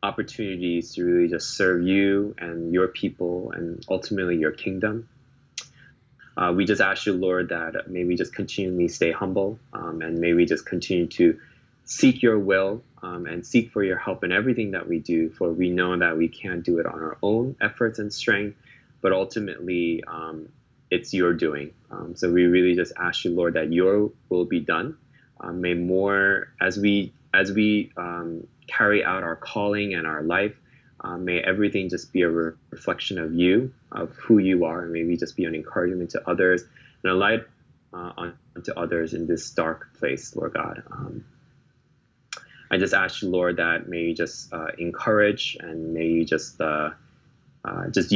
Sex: male